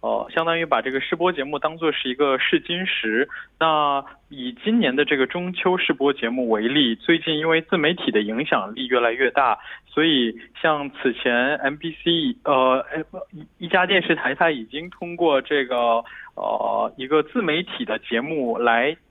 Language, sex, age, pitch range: Korean, male, 20-39, 130-170 Hz